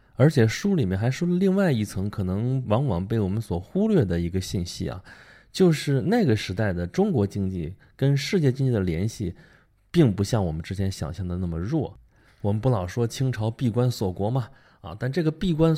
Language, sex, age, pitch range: Chinese, male, 20-39, 95-135 Hz